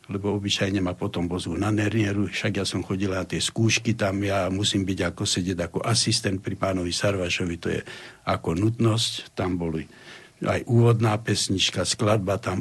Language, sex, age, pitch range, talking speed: Slovak, male, 70-89, 95-125 Hz, 170 wpm